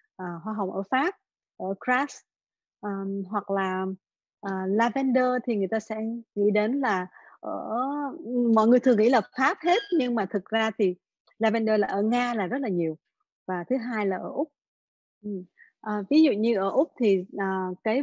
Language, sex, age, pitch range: Vietnamese, female, 20-39, 195-250 Hz